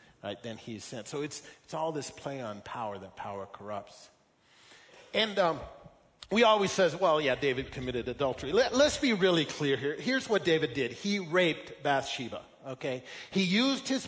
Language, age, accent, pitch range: English, 40-59, American, 150-230 Hz